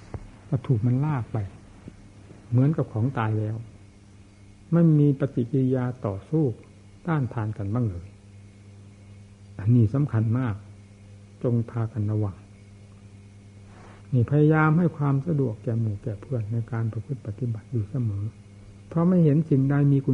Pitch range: 100-130 Hz